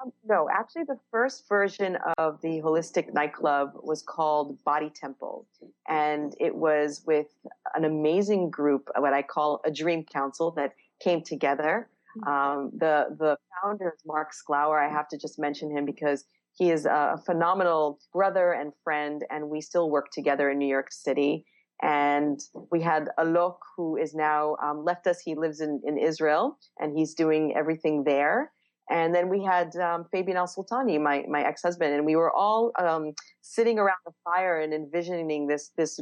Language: English